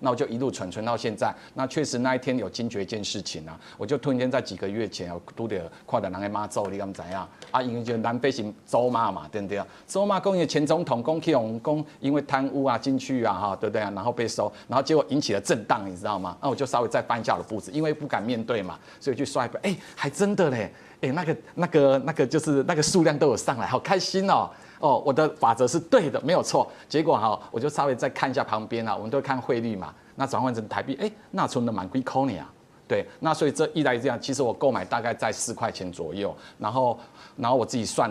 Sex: male